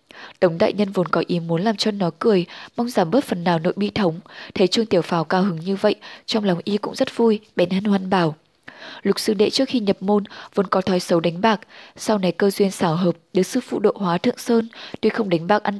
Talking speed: 260 wpm